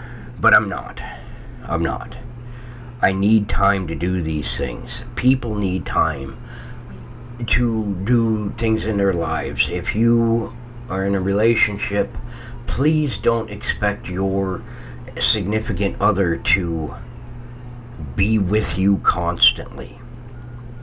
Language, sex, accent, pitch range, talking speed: English, male, American, 105-120 Hz, 110 wpm